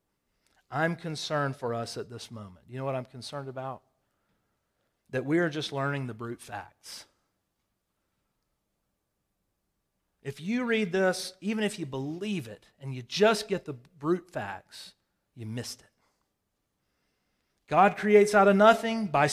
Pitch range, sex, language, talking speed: 125-175 Hz, male, English, 145 wpm